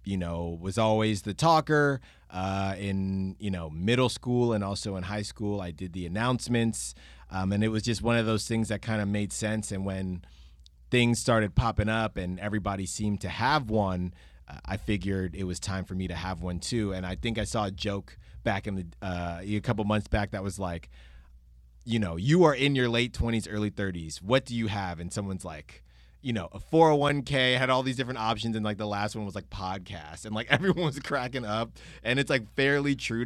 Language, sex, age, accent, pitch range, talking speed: English, male, 30-49, American, 95-115 Hz, 220 wpm